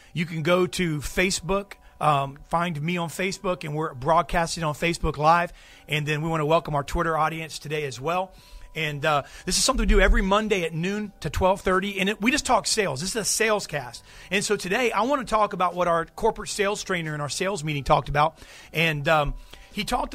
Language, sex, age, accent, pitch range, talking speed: English, male, 40-59, American, 160-200 Hz, 225 wpm